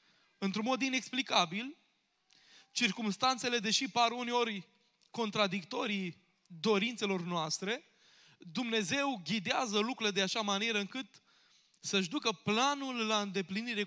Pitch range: 185-235 Hz